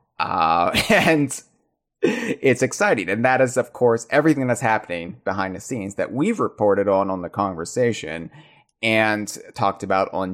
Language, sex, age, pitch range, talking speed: English, male, 30-49, 100-135 Hz, 150 wpm